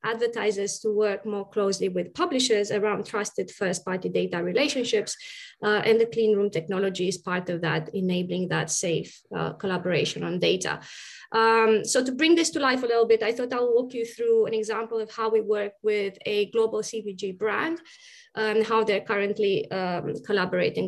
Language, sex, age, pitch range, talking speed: English, female, 20-39, 200-230 Hz, 180 wpm